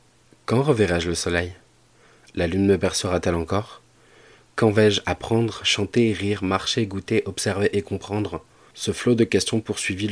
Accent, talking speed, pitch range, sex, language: French, 140 wpm, 85-105 Hz, male, French